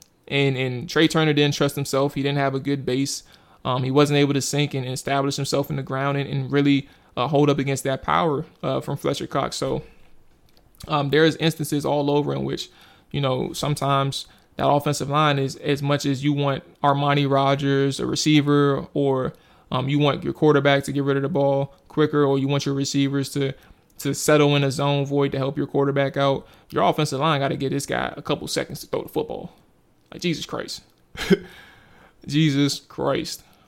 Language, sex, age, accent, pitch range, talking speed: English, male, 20-39, American, 140-150 Hz, 200 wpm